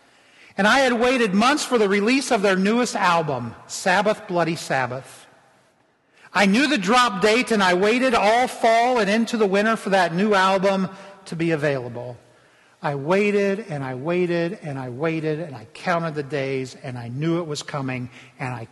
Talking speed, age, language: 185 wpm, 50-69, English